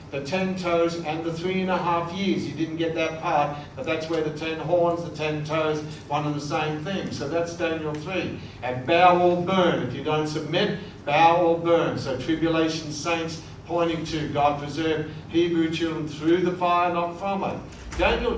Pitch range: 150-180 Hz